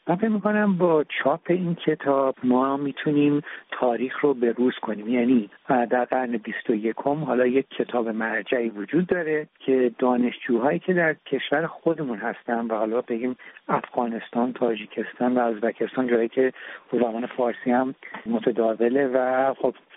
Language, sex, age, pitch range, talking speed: Persian, male, 60-79, 120-160 Hz, 140 wpm